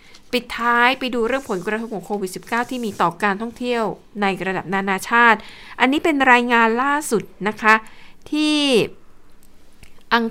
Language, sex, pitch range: Thai, female, 200-240 Hz